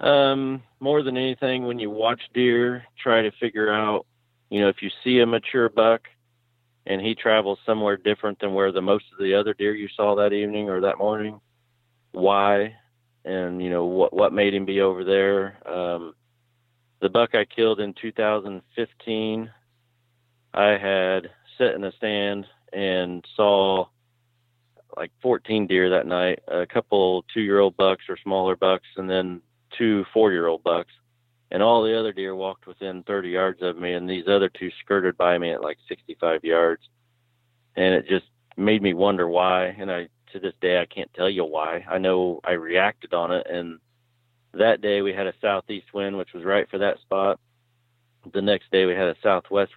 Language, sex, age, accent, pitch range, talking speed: English, male, 40-59, American, 95-120 Hz, 180 wpm